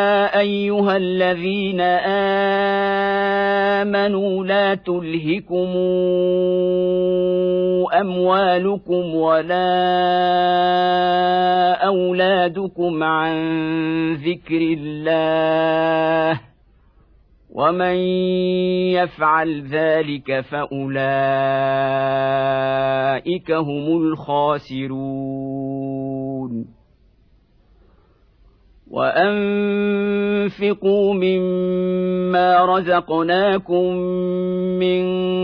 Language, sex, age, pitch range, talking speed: Arabic, male, 50-69, 155-185 Hz, 35 wpm